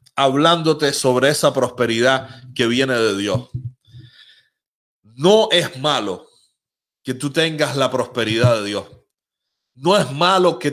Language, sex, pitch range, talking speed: Spanish, male, 125-155 Hz, 125 wpm